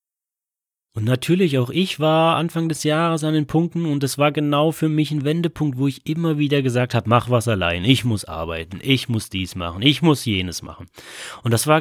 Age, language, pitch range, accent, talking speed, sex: 30-49, German, 110-150 Hz, German, 215 wpm, male